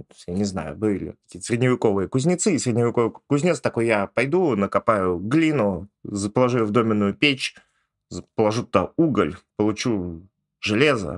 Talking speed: 125 wpm